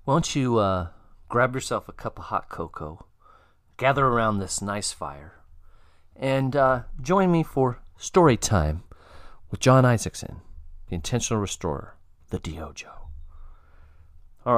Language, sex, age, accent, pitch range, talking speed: English, male, 40-59, American, 85-130 Hz, 130 wpm